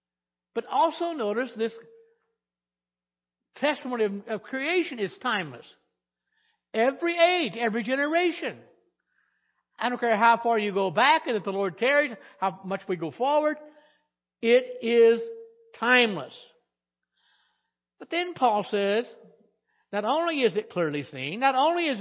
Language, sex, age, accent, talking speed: English, male, 60-79, American, 130 wpm